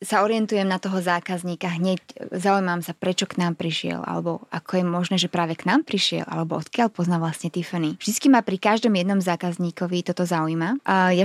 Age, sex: 20-39, female